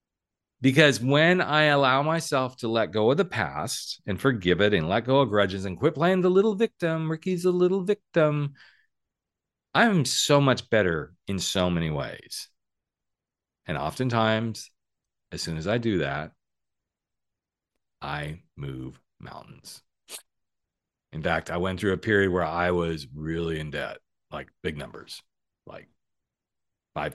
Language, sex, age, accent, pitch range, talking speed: English, male, 40-59, American, 90-140 Hz, 145 wpm